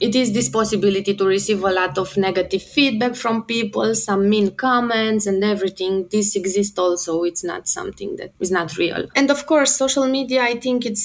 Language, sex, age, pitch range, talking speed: English, female, 20-39, 200-255 Hz, 195 wpm